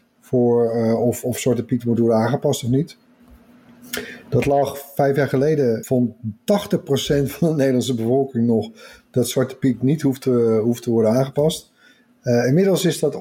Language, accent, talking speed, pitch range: Dutch, Dutch, 170 wpm, 120-155 Hz